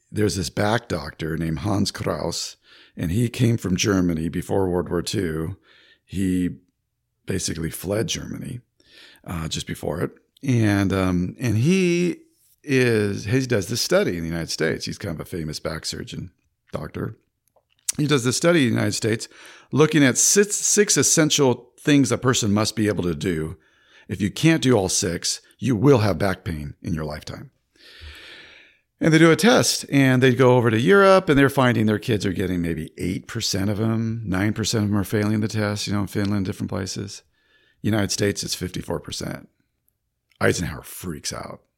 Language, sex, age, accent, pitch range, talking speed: English, male, 50-69, American, 90-130 Hz, 175 wpm